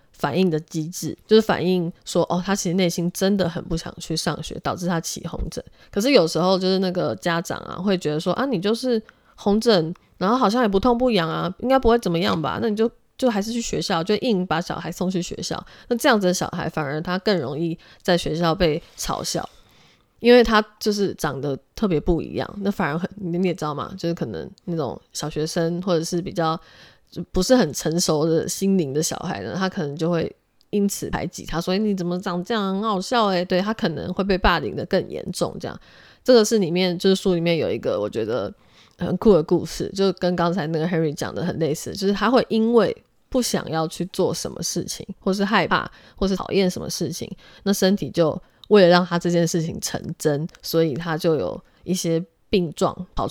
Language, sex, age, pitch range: Chinese, female, 20-39, 165-200 Hz